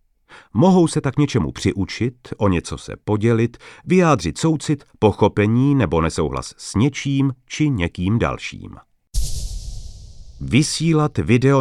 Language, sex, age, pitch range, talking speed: Czech, male, 40-59, 95-140 Hz, 110 wpm